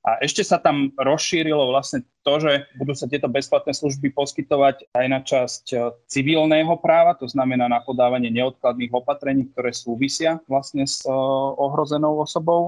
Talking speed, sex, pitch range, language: 145 wpm, male, 120-140 Hz, Slovak